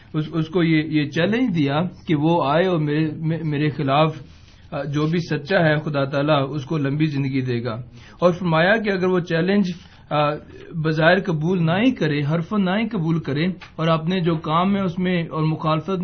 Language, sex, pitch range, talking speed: Urdu, male, 145-185 Hz, 180 wpm